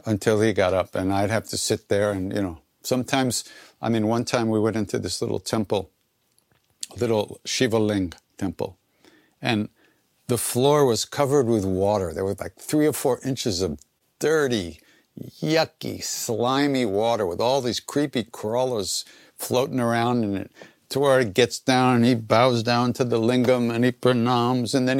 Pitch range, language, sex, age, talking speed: 105-125 Hz, English, male, 60-79, 175 wpm